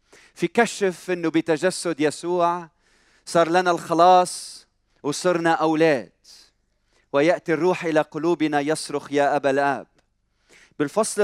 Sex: male